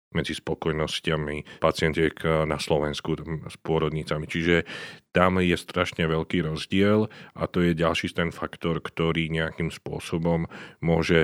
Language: Slovak